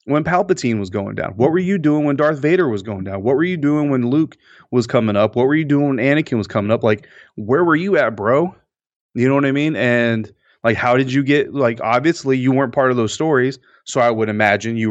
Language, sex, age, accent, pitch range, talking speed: English, male, 30-49, American, 115-155 Hz, 255 wpm